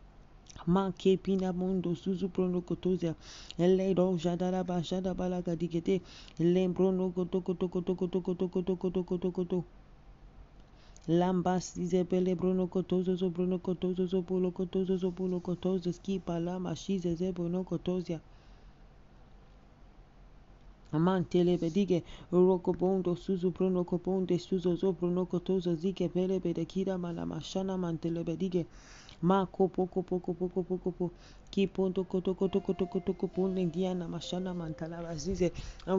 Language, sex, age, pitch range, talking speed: English, male, 30-49, 175-190 Hz, 90 wpm